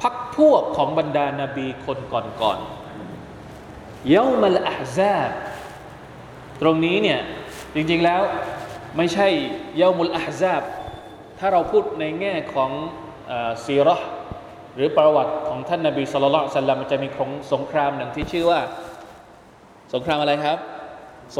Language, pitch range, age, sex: Thai, 140-215 Hz, 20-39, male